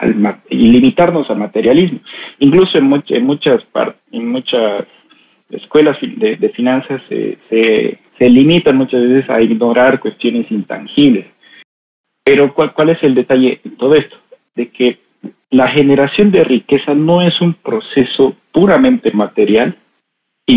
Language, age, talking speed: Spanish, 50-69, 140 wpm